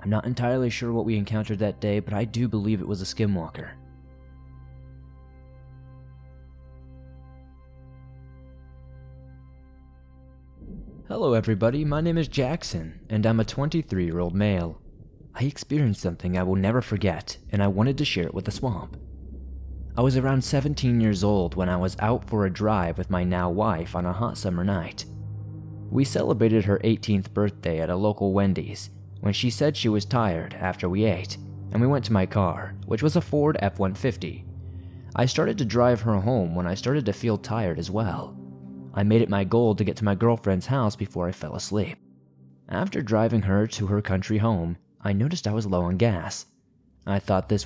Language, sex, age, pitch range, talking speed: English, male, 20-39, 90-115 Hz, 180 wpm